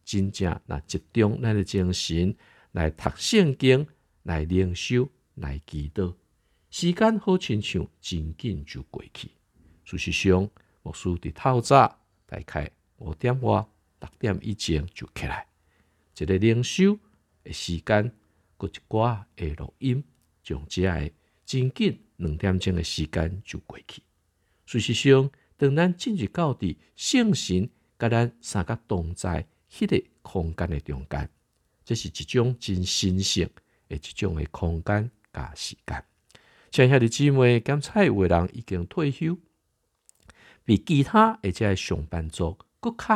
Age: 50-69